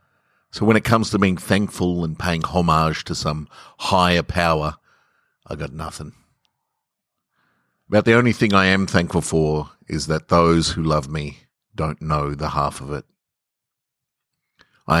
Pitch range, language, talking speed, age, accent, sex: 75-90 Hz, English, 150 wpm, 50-69, Australian, male